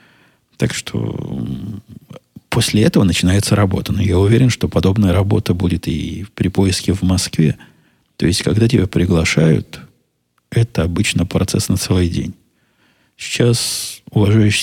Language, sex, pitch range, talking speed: Russian, male, 90-115 Hz, 125 wpm